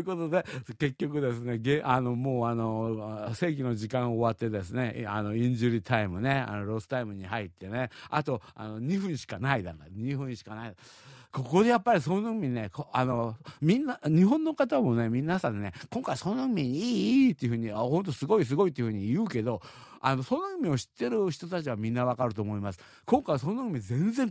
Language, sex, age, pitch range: Japanese, male, 50-69, 115-170 Hz